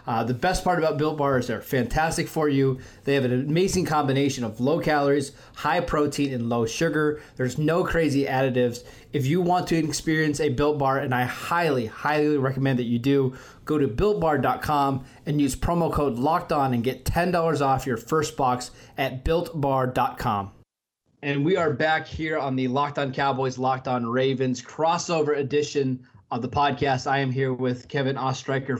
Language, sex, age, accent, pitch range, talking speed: English, male, 20-39, American, 125-150 Hz, 180 wpm